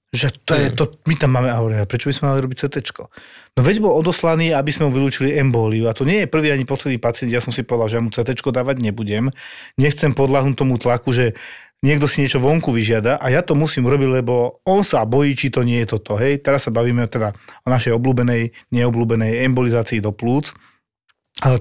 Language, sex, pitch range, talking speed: Slovak, male, 115-135 Hz, 215 wpm